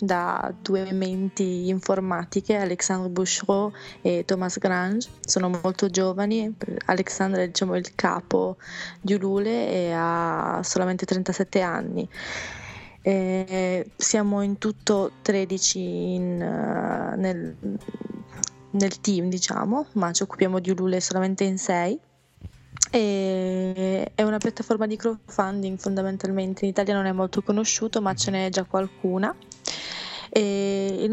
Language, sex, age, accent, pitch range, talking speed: Italian, female, 20-39, native, 180-205 Hz, 120 wpm